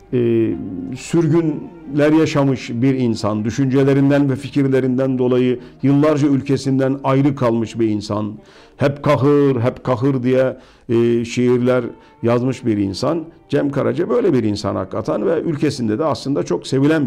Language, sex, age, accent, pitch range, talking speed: Turkish, male, 50-69, native, 115-150 Hz, 130 wpm